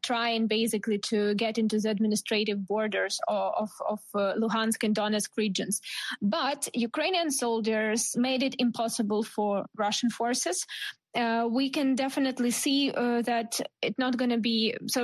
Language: English